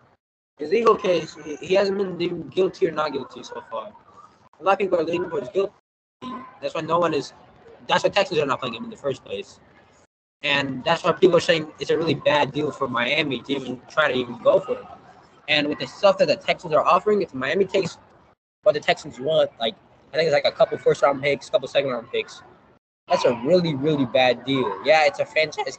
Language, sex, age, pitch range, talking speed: English, male, 20-39, 145-200 Hz, 225 wpm